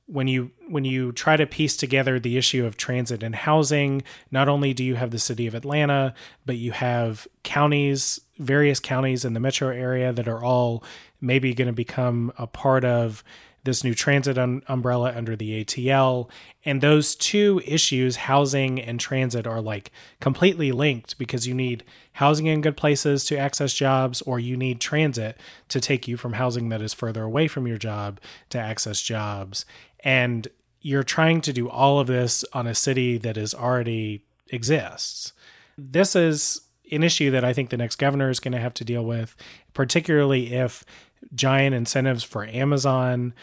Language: English